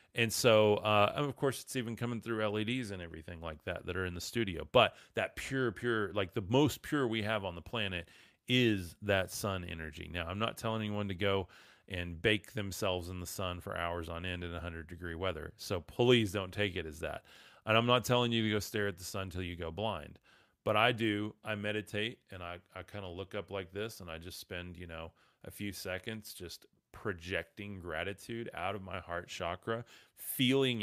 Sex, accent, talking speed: male, American, 210 wpm